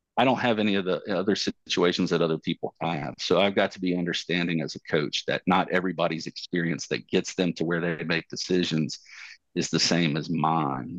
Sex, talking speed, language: male, 210 wpm, English